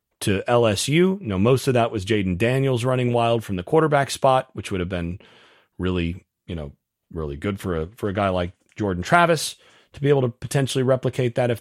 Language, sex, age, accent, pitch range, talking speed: English, male, 40-59, American, 100-135 Hz, 210 wpm